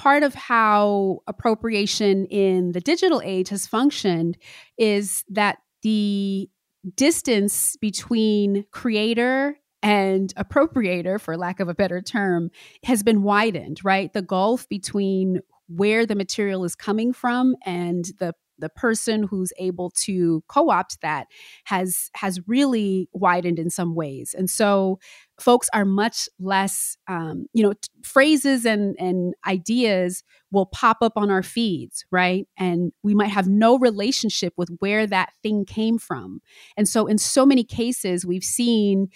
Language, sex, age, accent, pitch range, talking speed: English, female, 30-49, American, 185-230 Hz, 145 wpm